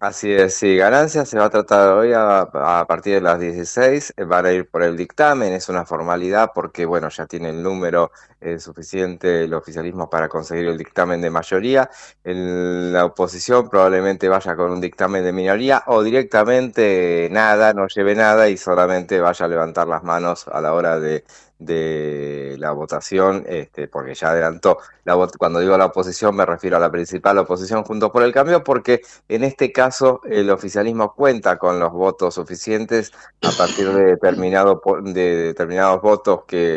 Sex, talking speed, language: male, 175 wpm, Spanish